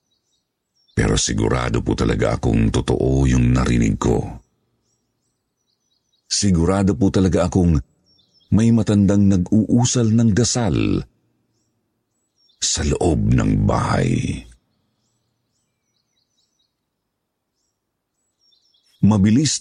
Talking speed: 70 wpm